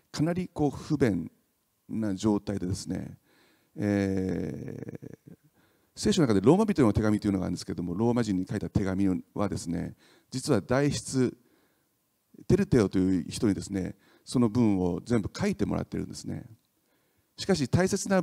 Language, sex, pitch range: Japanese, male, 95-140 Hz